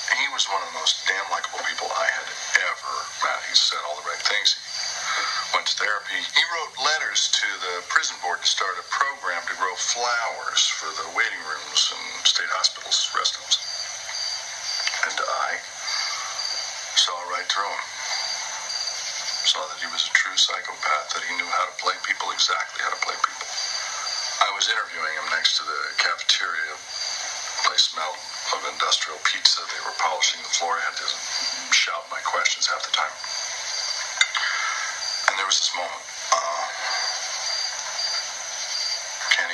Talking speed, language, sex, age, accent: 160 wpm, English, male, 50-69, American